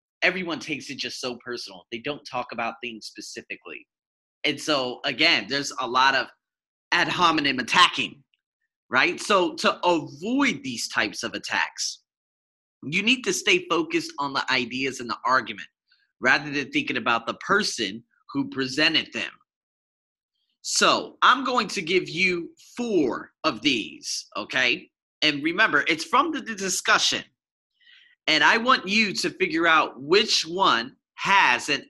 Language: English